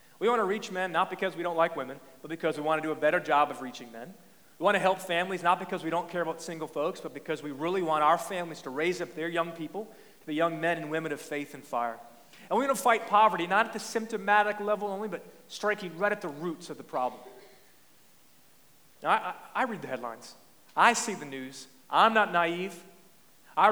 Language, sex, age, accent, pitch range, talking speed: English, male, 40-59, American, 165-220 Hz, 240 wpm